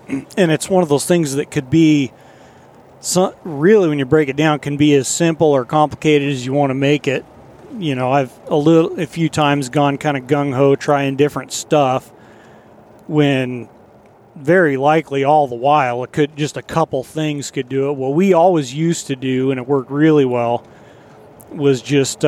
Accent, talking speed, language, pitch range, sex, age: American, 190 wpm, English, 130-150 Hz, male, 40-59